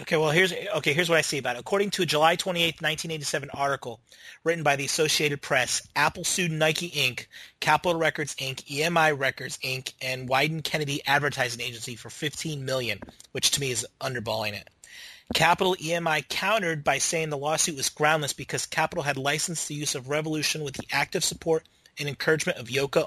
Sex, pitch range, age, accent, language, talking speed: male, 135-160 Hz, 30-49, American, English, 185 wpm